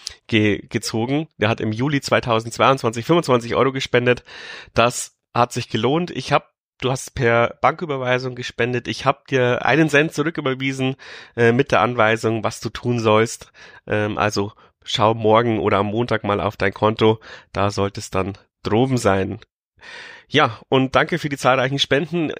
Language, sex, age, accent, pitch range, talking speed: German, male, 30-49, German, 115-135 Hz, 155 wpm